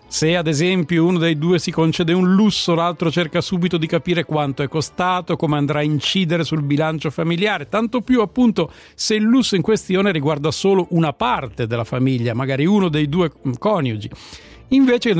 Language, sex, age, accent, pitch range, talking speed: Italian, male, 50-69, native, 155-200 Hz, 180 wpm